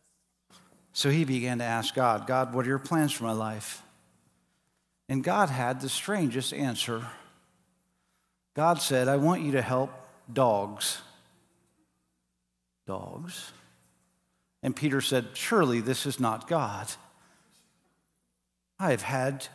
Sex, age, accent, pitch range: male, 50-69, American, 120-175 Hz